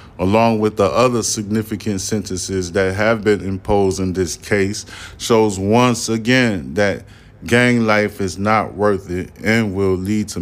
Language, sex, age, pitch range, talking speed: English, male, 20-39, 95-110 Hz, 155 wpm